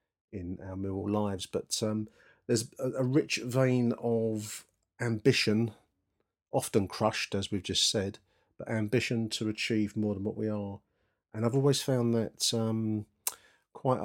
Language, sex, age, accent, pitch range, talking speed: English, male, 40-59, British, 100-110 Hz, 145 wpm